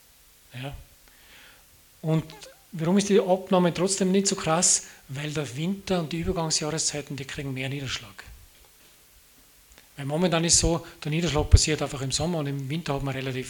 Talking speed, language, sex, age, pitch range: 165 wpm, German, male, 40-59, 140-165 Hz